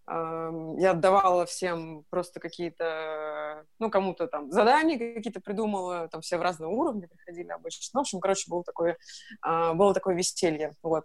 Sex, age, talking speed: female, 20-39, 140 wpm